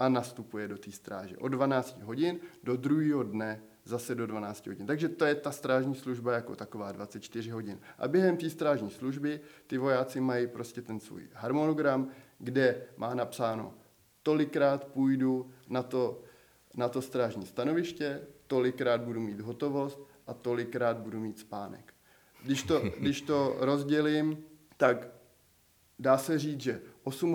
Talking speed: 150 wpm